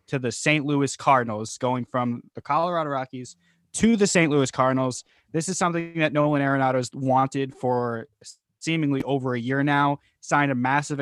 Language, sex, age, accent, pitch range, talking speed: English, male, 20-39, American, 125-150 Hz, 170 wpm